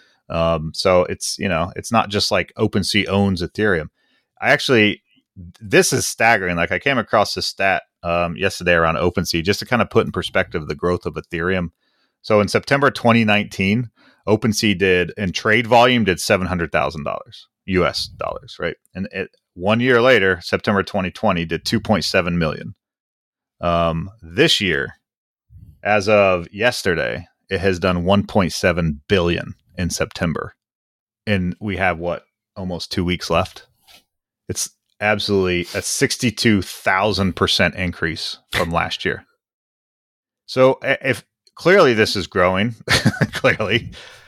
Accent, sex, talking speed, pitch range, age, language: American, male, 130 wpm, 90-110 Hz, 30-49, English